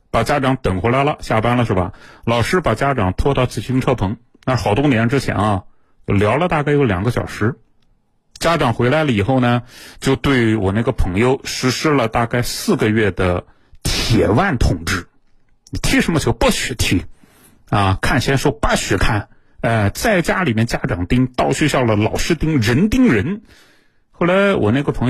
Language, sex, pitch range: Chinese, male, 105-150 Hz